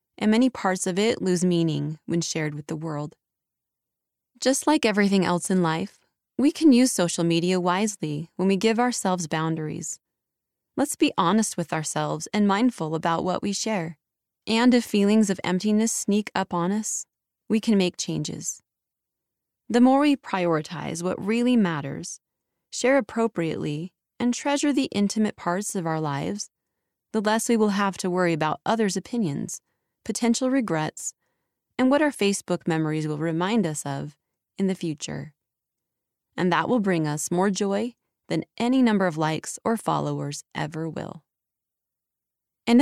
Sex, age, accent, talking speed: female, 20-39, American, 155 wpm